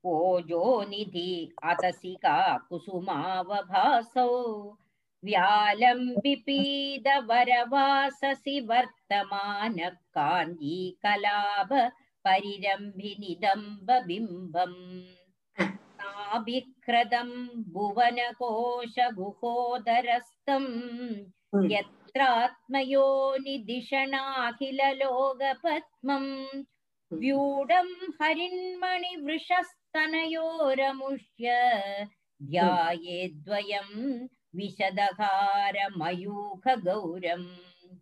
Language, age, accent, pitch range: Tamil, 50-69, native, 205-340 Hz